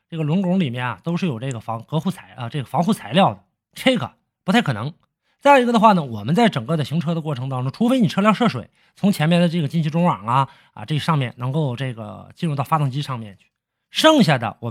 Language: Chinese